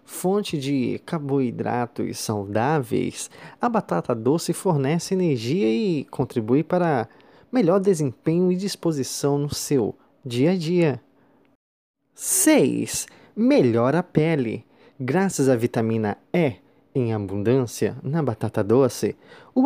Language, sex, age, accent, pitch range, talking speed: Portuguese, male, 20-39, Brazilian, 120-180 Hz, 105 wpm